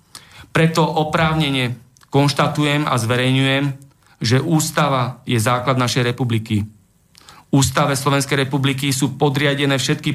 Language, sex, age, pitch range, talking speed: Slovak, male, 40-59, 125-145 Hz, 100 wpm